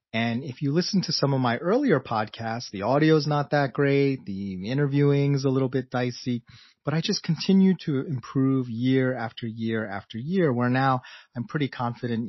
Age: 30-49